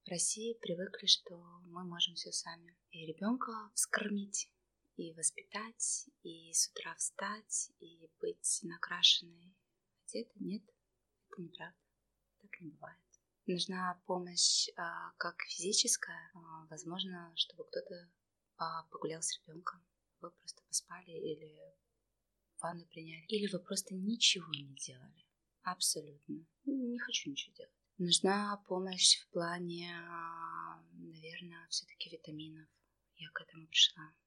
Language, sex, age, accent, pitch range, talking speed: Russian, female, 20-39, native, 165-195 Hz, 115 wpm